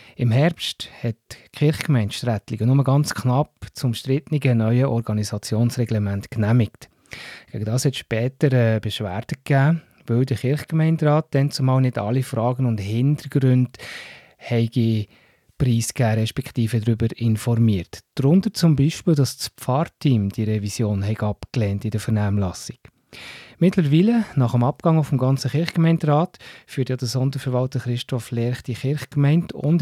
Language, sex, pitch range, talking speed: German, male, 115-150 Hz, 130 wpm